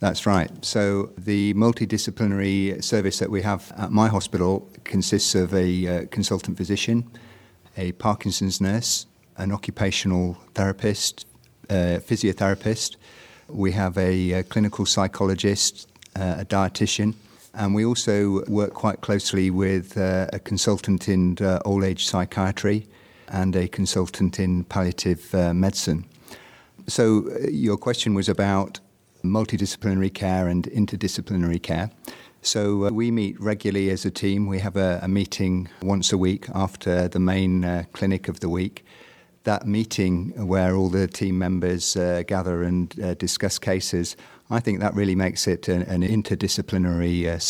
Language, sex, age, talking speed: English, male, 50-69, 145 wpm